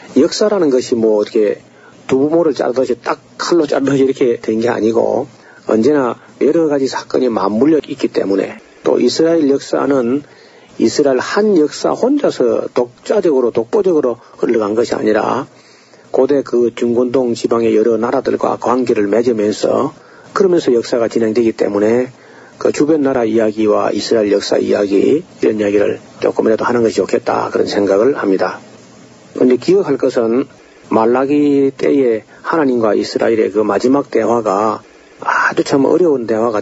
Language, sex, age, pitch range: Korean, male, 40-59, 115-160 Hz